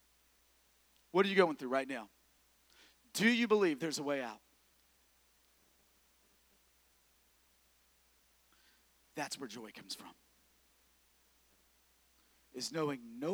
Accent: American